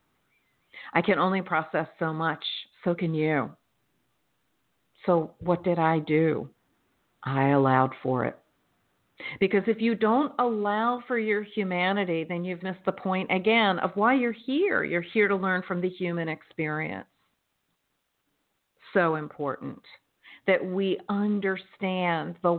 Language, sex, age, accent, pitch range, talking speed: English, female, 50-69, American, 175-230 Hz, 135 wpm